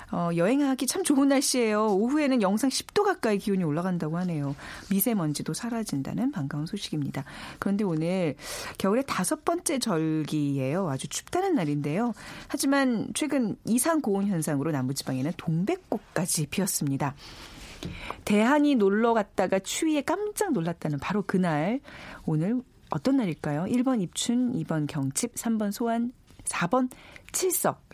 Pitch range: 155-240 Hz